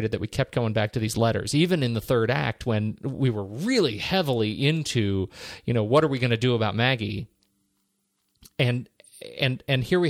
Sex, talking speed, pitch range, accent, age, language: male, 200 wpm, 115-155 Hz, American, 40-59, English